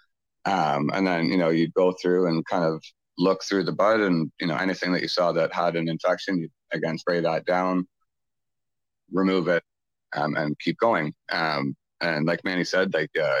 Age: 40-59